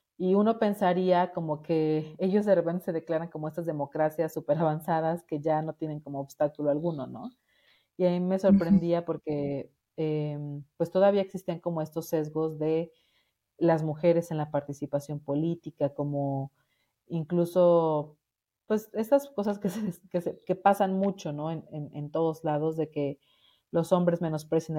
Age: 40-59